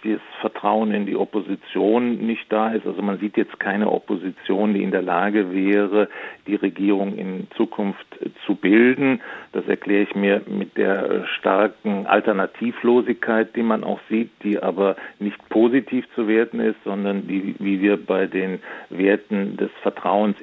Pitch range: 100-115 Hz